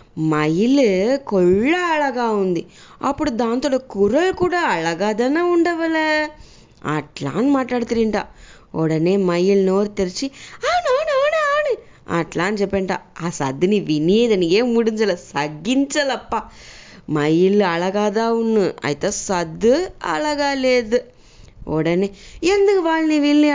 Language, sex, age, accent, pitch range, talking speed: English, female, 20-39, Indian, 185-290 Hz, 115 wpm